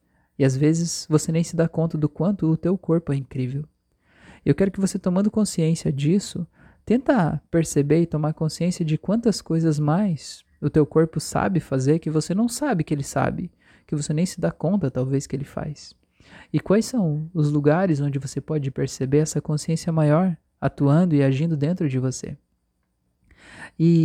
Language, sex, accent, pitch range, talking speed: Portuguese, male, Brazilian, 140-175 Hz, 180 wpm